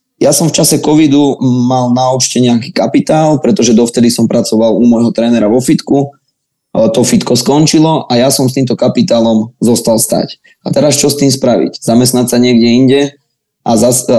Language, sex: Slovak, male